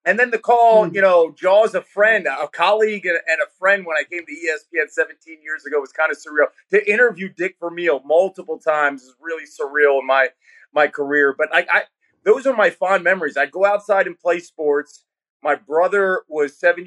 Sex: male